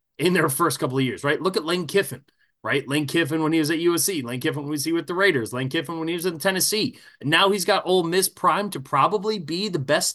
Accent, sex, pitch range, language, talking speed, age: American, male, 130-175 Hz, English, 265 wpm, 20-39